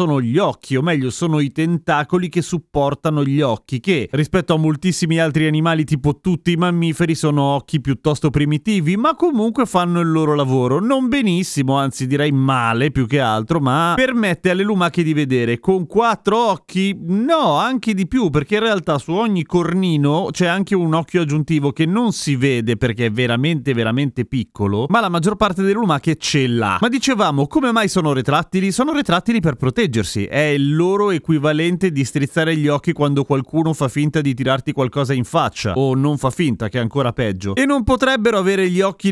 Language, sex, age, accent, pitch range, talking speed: Italian, male, 30-49, native, 135-180 Hz, 185 wpm